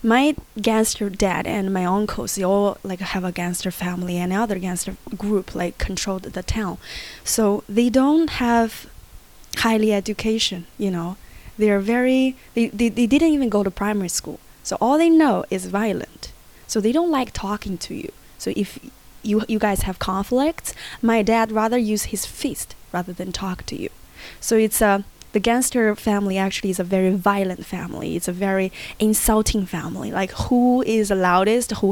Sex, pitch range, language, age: female, 185-220 Hz, Chinese, 20-39